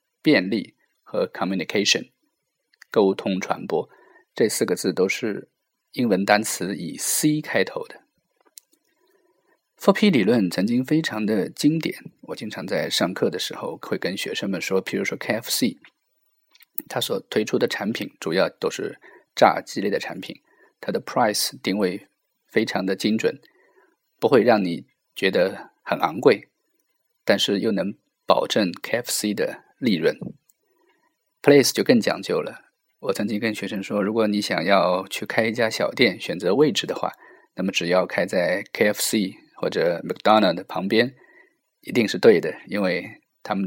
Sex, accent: male, native